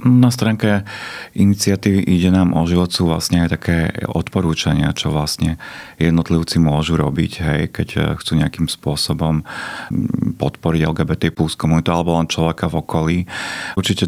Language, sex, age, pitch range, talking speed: Slovak, male, 40-59, 75-85 Hz, 135 wpm